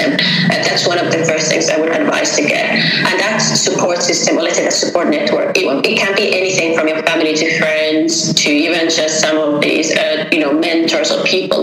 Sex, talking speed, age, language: female, 220 wpm, 30-49, English